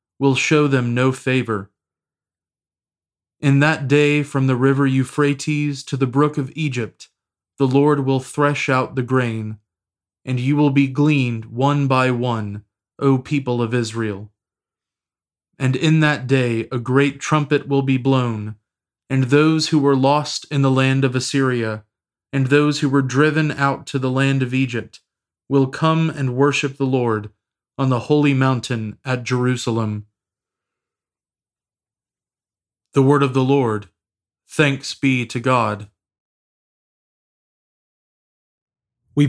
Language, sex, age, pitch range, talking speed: English, male, 30-49, 115-140 Hz, 135 wpm